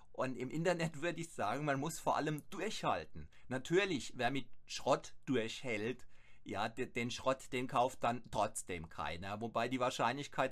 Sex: male